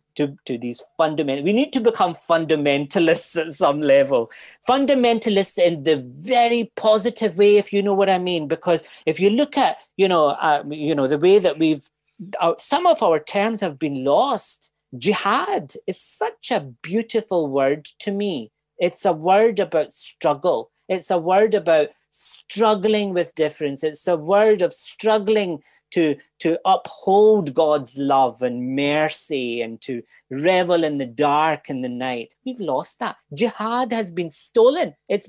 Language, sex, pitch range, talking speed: English, male, 150-215 Hz, 160 wpm